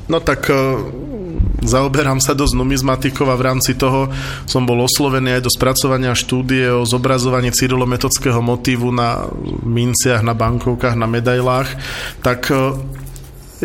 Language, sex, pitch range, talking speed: Slovak, male, 120-135 Hz, 125 wpm